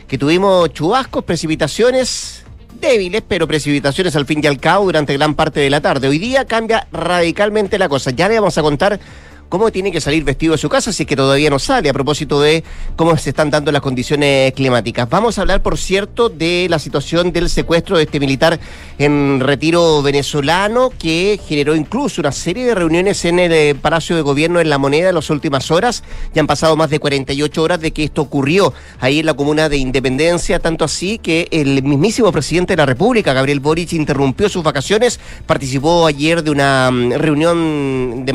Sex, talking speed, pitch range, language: male, 195 wpm, 140-175 Hz, Spanish